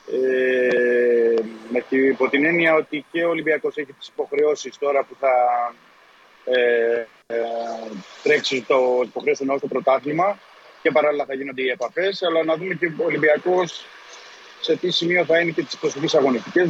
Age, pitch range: 30-49, 125-175 Hz